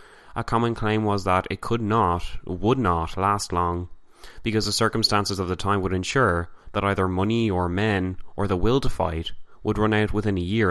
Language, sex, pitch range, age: English, male, 90-110 Hz, 20-39